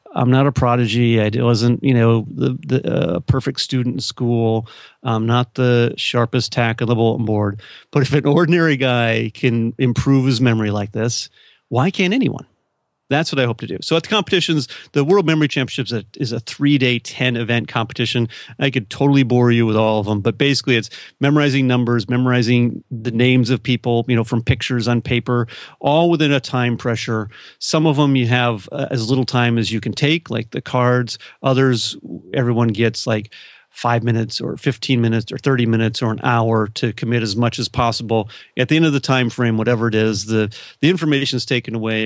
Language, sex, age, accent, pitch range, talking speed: English, male, 40-59, American, 115-130 Hz, 200 wpm